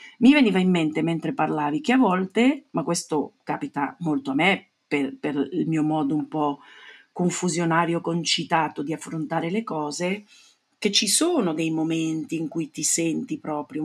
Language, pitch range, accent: Italian, 155-190 Hz, native